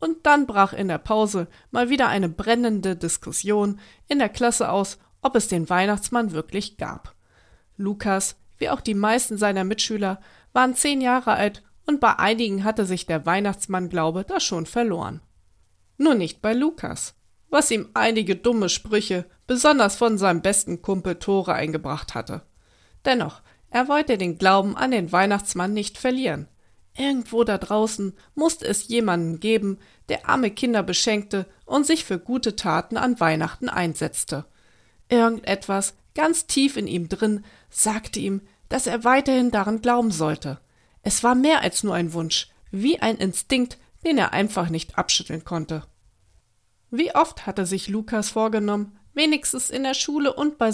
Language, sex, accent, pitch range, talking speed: German, female, German, 180-240 Hz, 155 wpm